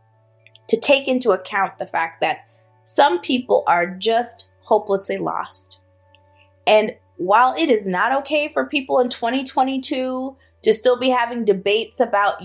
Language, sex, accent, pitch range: English, female, American, 190-265 Hz